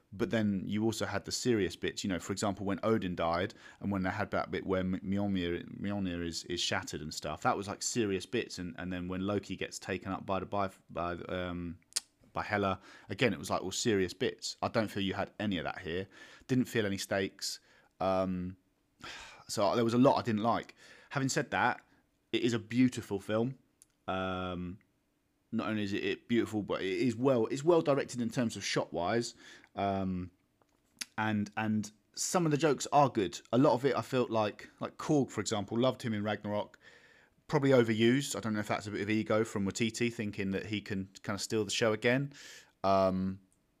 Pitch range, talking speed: 95-115 Hz, 210 wpm